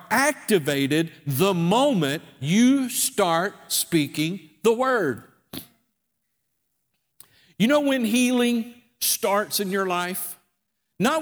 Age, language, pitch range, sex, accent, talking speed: 50-69, English, 145-215 Hz, male, American, 90 wpm